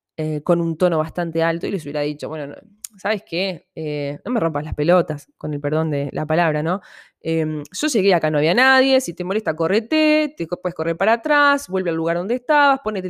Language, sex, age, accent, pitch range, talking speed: Spanish, female, 20-39, Argentinian, 165-260 Hz, 220 wpm